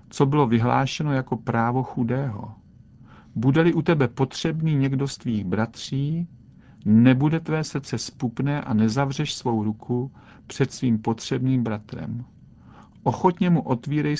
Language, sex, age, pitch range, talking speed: Czech, male, 50-69, 115-140 Hz, 125 wpm